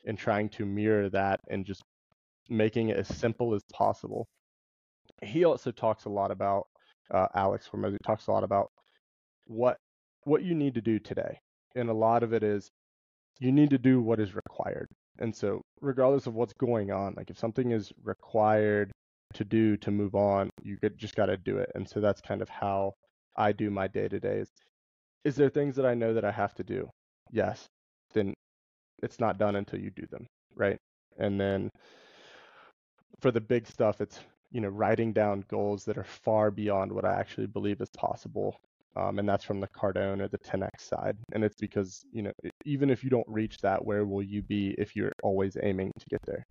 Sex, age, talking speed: male, 20-39, 200 wpm